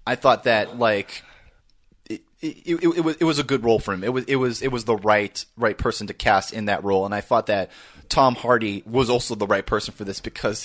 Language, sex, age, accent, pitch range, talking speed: English, male, 30-49, American, 110-150 Hz, 255 wpm